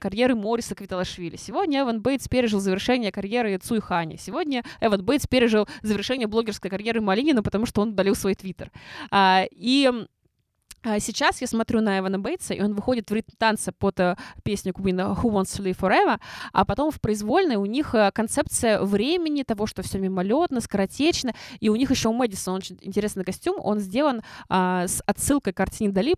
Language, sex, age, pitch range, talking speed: Russian, female, 20-39, 190-240 Hz, 175 wpm